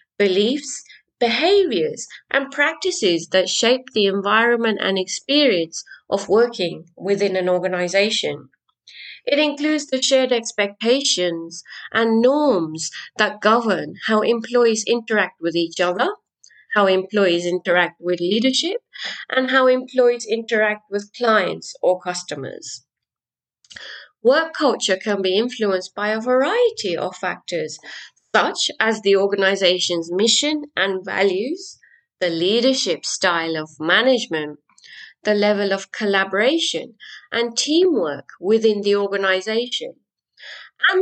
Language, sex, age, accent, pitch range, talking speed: English, female, 30-49, British, 190-260 Hz, 110 wpm